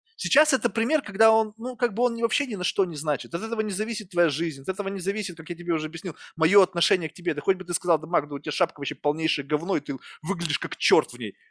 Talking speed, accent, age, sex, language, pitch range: 280 wpm, native, 20-39, male, Russian, 160-220 Hz